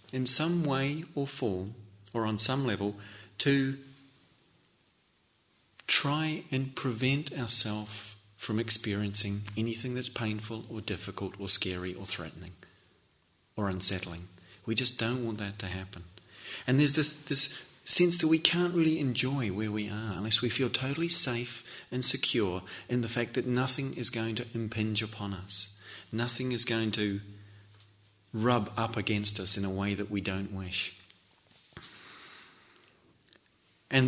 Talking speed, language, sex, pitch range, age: 145 wpm, English, male, 100-125 Hz, 40-59